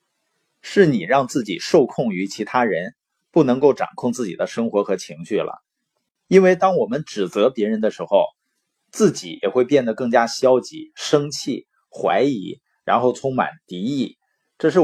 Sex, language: male, Chinese